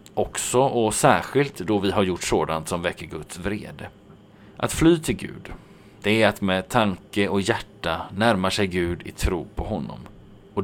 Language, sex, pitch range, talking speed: Swedish, male, 95-115 Hz, 175 wpm